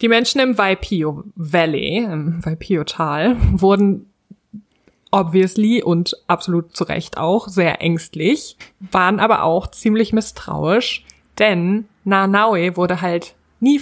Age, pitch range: 20-39, 170-215 Hz